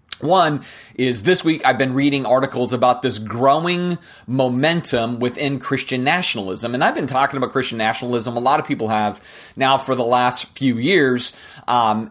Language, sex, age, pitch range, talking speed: English, male, 30-49, 125-150 Hz, 170 wpm